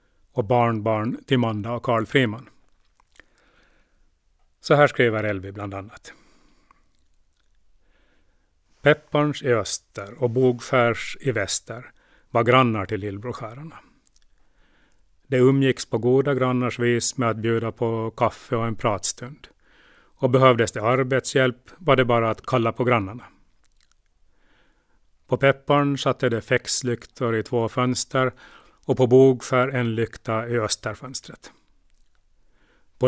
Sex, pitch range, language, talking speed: male, 110-130 Hz, Swedish, 120 wpm